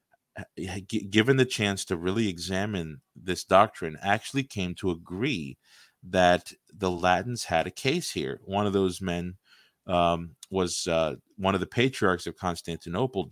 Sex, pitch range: male, 90-105 Hz